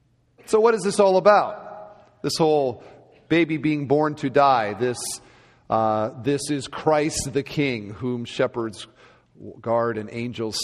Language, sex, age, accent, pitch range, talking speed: English, male, 40-59, American, 125-160 Hz, 140 wpm